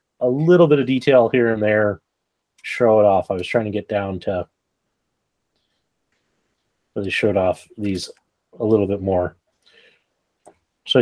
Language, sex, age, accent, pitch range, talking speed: English, male, 30-49, American, 105-145 Hz, 150 wpm